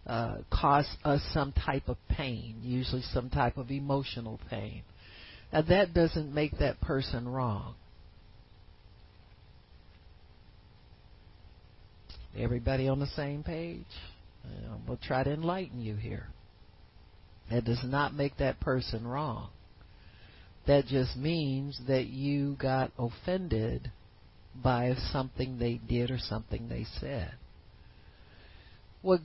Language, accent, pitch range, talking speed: English, American, 105-150 Hz, 110 wpm